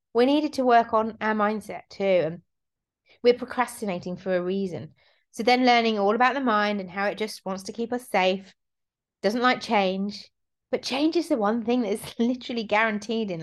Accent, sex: British, female